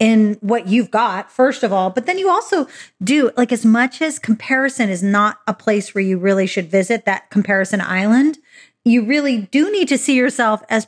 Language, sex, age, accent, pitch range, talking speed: English, female, 30-49, American, 205-260 Hz, 205 wpm